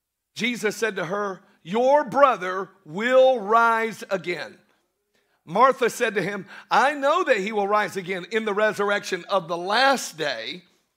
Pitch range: 195-275 Hz